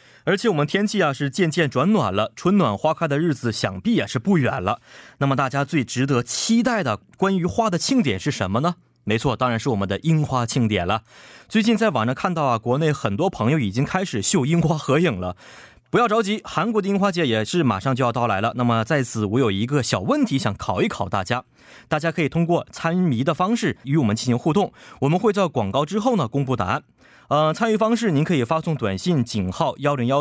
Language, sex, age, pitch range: Korean, male, 20-39, 120-175 Hz